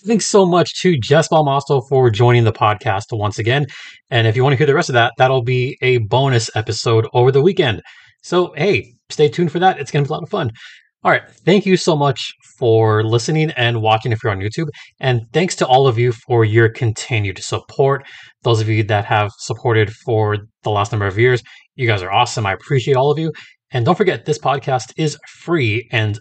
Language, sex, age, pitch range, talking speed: English, male, 20-39, 110-145 Hz, 220 wpm